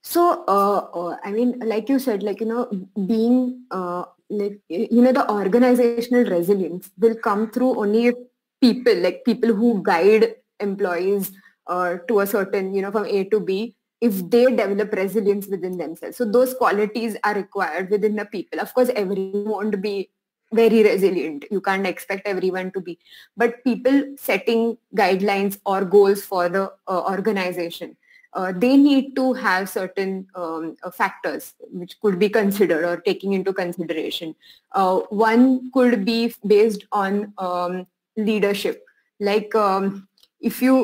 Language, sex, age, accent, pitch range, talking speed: English, female, 20-39, Indian, 190-235 Hz, 150 wpm